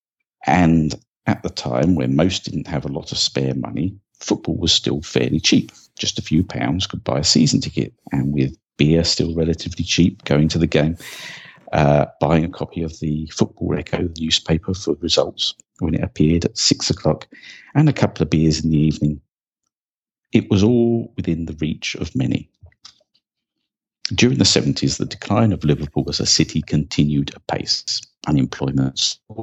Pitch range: 70-95 Hz